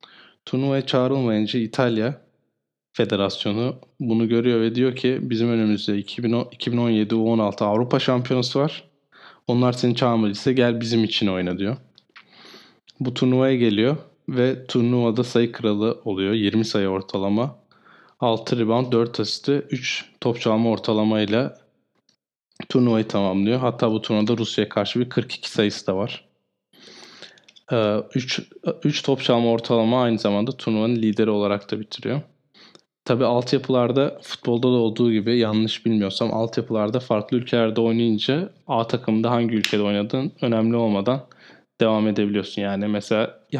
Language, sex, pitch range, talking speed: Turkish, male, 110-125 Hz, 125 wpm